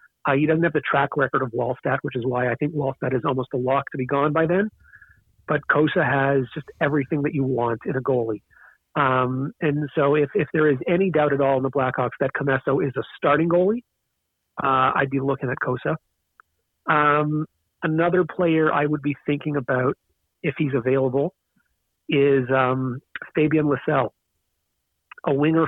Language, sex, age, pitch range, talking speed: English, male, 40-59, 130-150 Hz, 180 wpm